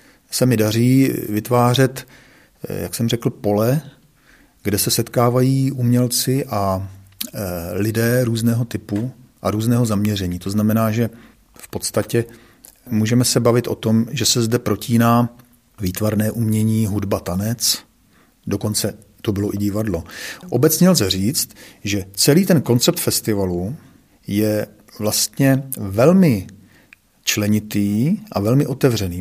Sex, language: male, Czech